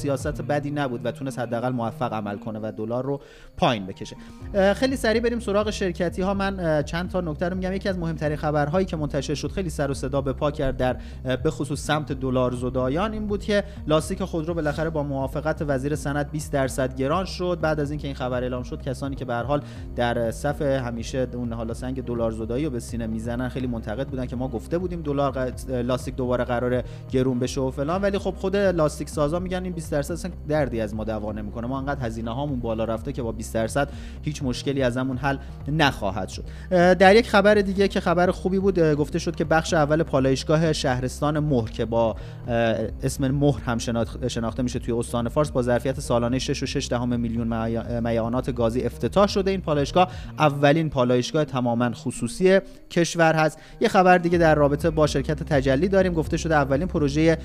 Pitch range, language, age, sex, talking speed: 125-160 Hz, Persian, 30-49, male, 190 wpm